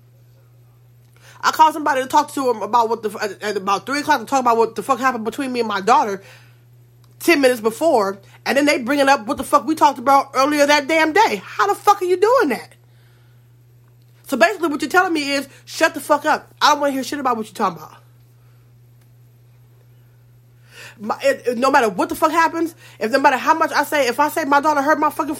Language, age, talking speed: English, 30-49, 235 wpm